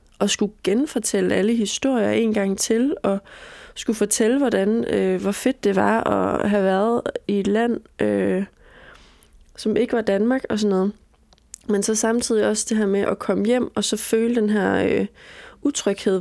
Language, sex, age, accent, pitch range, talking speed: Danish, female, 20-39, native, 195-235 Hz, 180 wpm